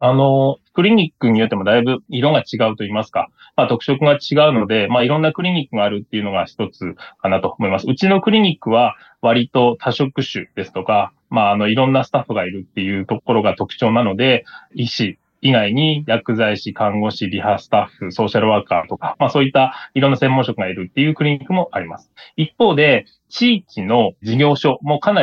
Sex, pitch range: male, 115-155 Hz